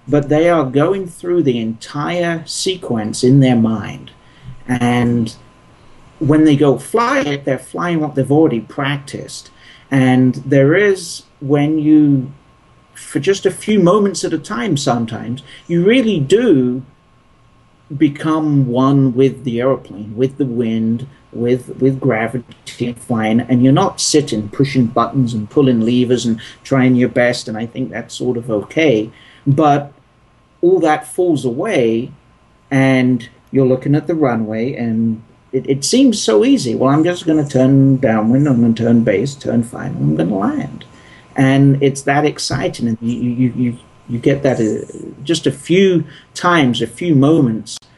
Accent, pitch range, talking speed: British, 120-145 Hz, 155 wpm